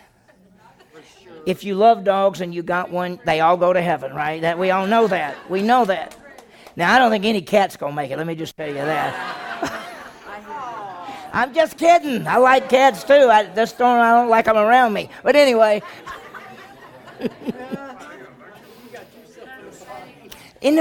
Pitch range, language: 165-215 Hz, English